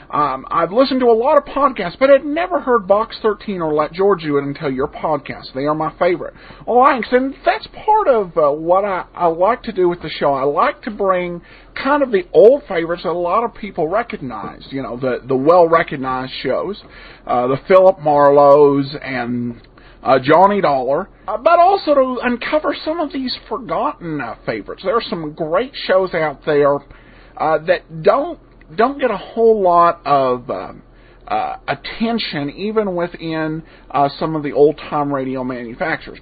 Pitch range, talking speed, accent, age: 145-245 Hz, 180 wpm, American, 40-59